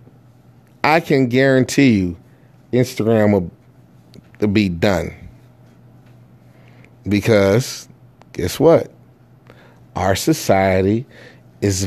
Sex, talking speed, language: male, 75 wpm, English